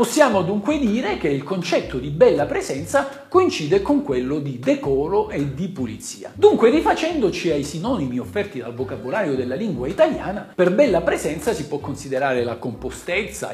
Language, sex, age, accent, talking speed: Italian, male, 50-69, native, 155 wpm